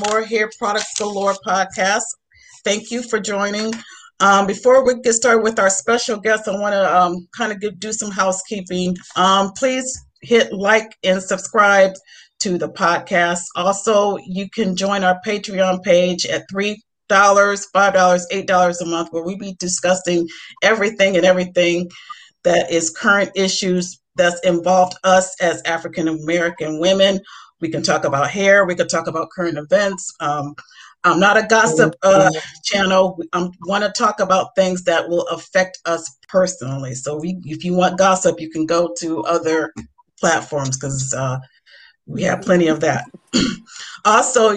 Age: 40-59